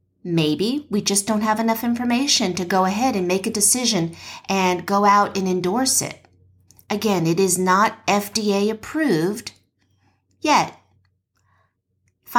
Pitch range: 170-225 Hz